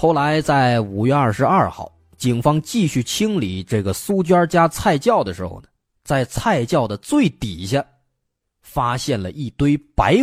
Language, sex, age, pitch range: Chinese, male, 30-49, 110-175 Hz